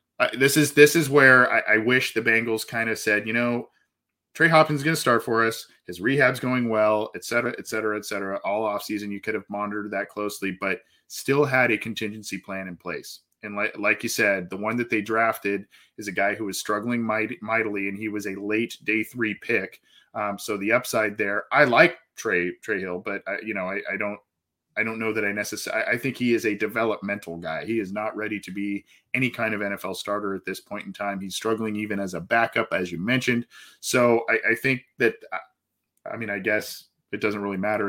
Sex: male